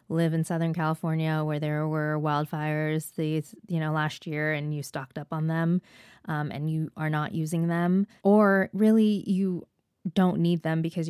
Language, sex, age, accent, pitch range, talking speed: English, female, 20-39, American, 155-185 Hz, 180 wpm